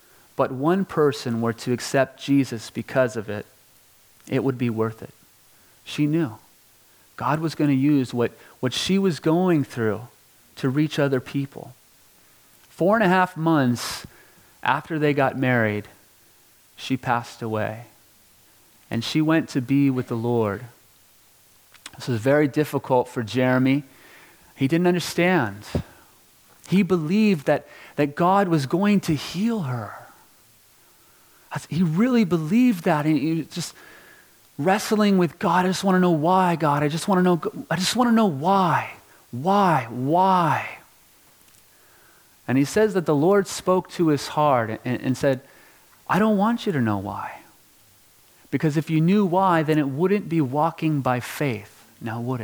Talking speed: 145 wpm